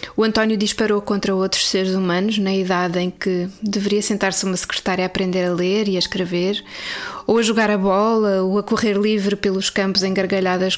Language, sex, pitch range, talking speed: Portuguese, female, 190-215 Hz, 190 wpm